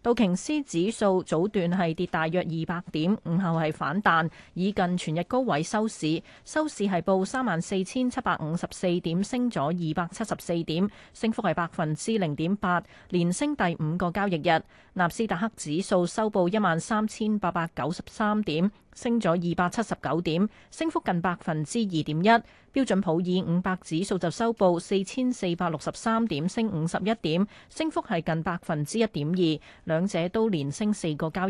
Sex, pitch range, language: female, 165-215 Hz, Chinese